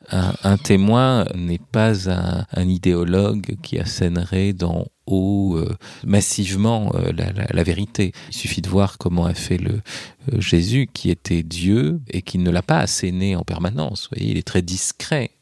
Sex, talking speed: male, 180 wpm